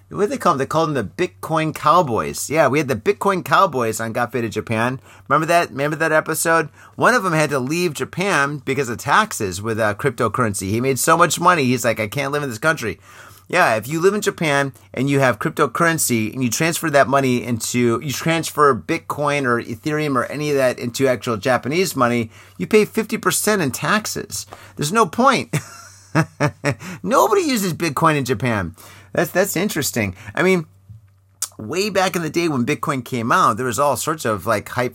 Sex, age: male, 30-49